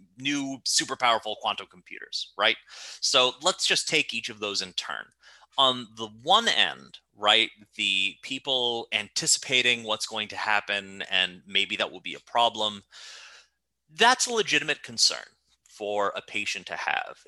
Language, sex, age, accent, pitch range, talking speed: English, male, 30-49, American, 110-145 Hz, 150 wpm